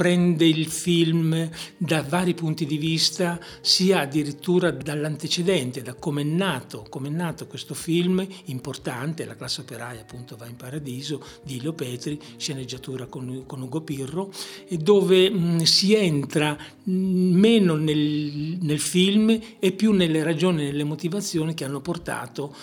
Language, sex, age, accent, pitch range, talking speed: Italian, male, 60-79, native, 130-160 Hz, 135 wpm